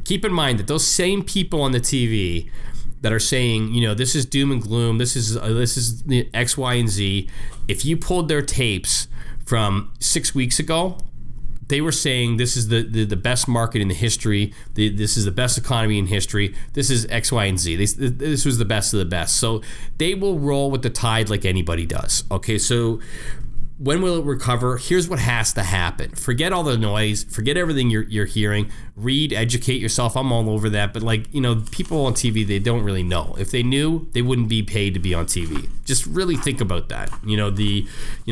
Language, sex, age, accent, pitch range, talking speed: English, male, 30-49, American, 105-130 Hz, 220 wpm